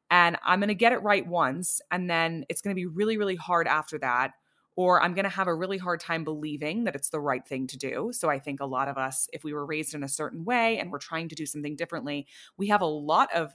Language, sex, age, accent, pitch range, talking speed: English, female, 20-39, American, 150-200 Hz, 280 wpm